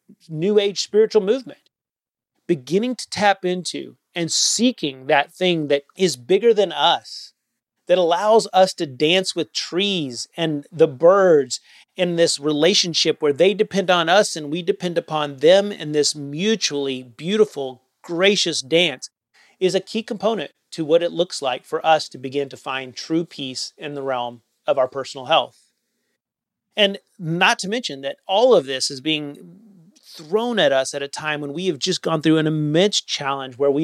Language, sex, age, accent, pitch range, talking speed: English, male, 30-49, American, 155-210 Hz, 170 wpm